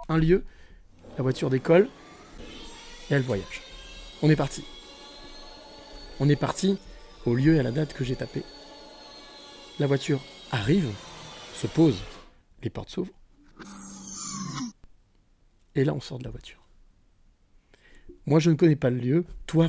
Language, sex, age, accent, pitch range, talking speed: French, male, 30-49, French, 120-170 Hz, 140 wpm